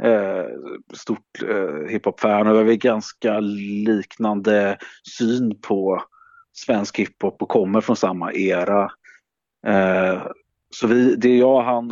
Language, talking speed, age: Swedish, 125 wpm, 40-59